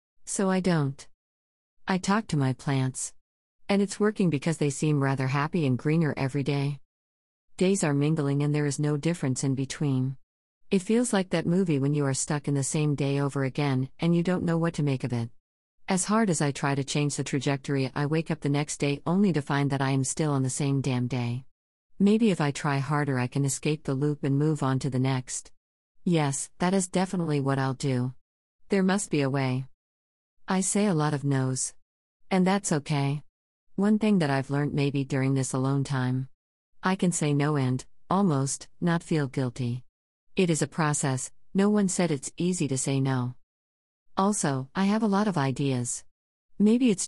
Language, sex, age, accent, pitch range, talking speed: English, female, 50-69, American, 130-165 Hz, 200 wpm